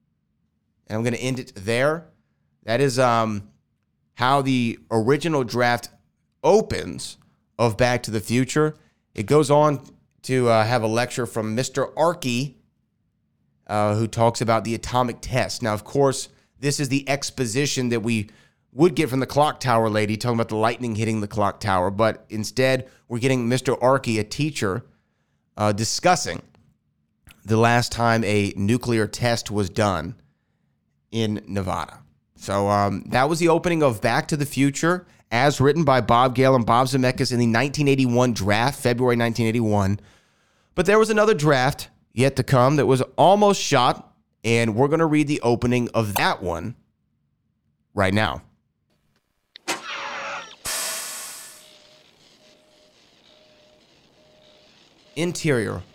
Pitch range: 110-135 Hz